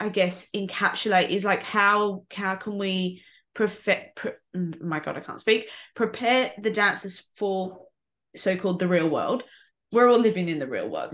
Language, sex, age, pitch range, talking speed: English, female, 20-39, 180-215 Hz, 160 wpm